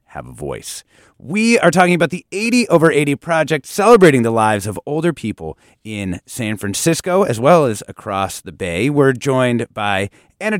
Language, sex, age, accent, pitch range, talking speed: English, male, 30-49, American, 105-170 Hz, 175 wpm